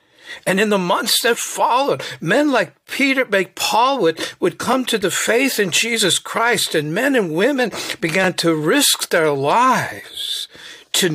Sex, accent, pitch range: male, American, 165-230 Hz